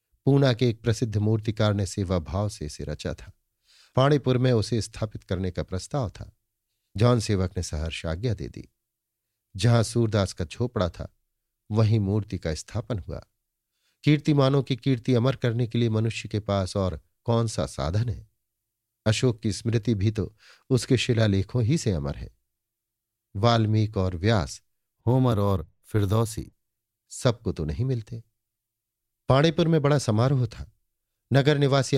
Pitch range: 100-125 Hz